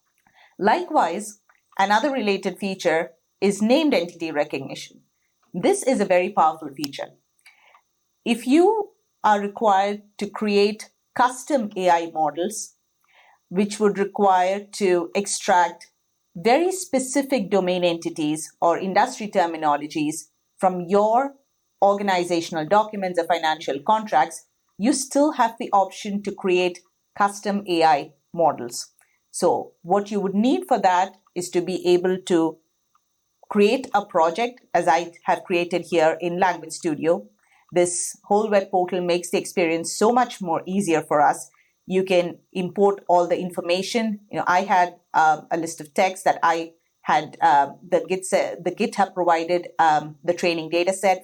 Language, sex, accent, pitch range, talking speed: English, female, Indian, 170-205 Hz, 140 wpm